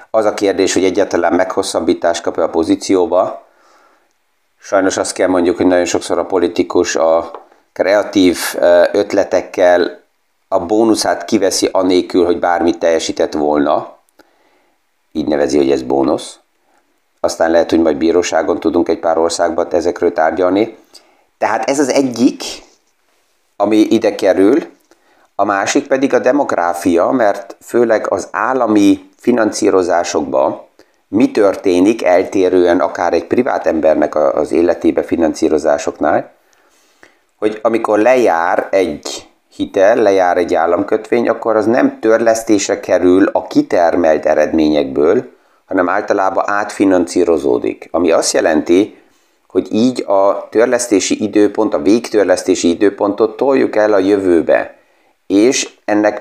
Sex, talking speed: male, 115 wpm